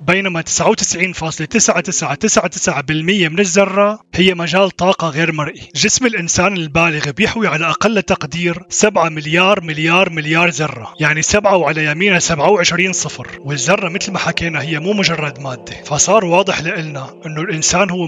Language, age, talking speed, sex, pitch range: Arabic, 20-39, 135 wpm, male, 150-185 Hz